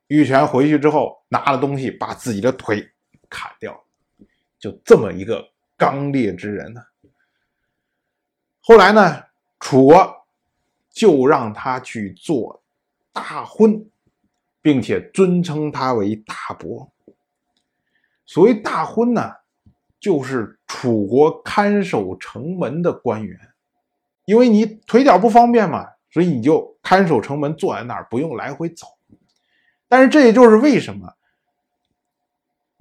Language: Chinese